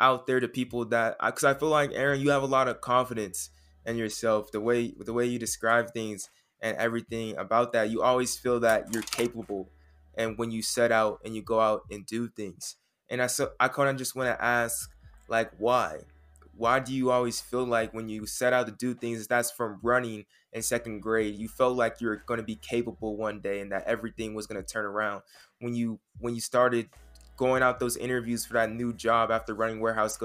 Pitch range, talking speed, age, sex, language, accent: 110-120 Hz, 225 wpm, 20-39, male, English, American